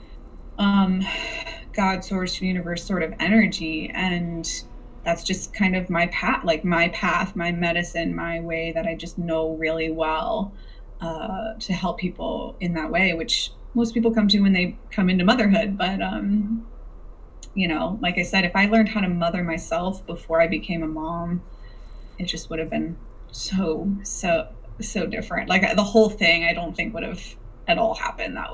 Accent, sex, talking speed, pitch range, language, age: American, female, 180 wpm, 170-215 Hz, English, 20-39